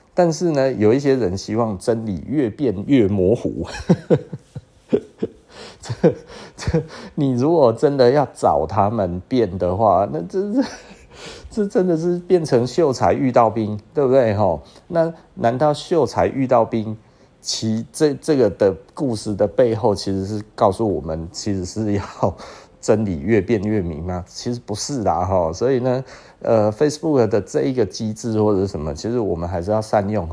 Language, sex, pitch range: Chinese, male, 100-140 Hz